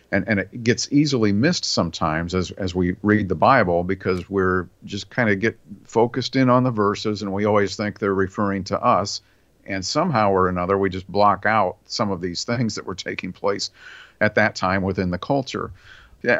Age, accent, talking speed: 50-69, American, 200 wpm